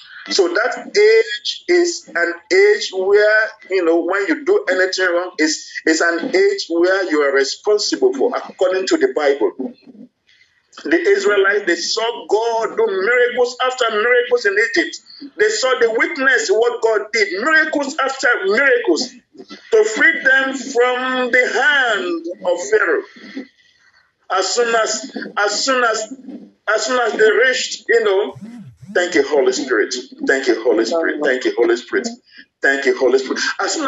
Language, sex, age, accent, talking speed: English, male, 50-69, Nigerian, 155 wpm